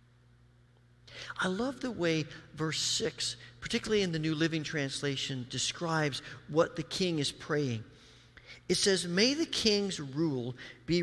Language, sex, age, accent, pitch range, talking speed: English, male, 50-69, American, 120-180 Hz, 135 wpm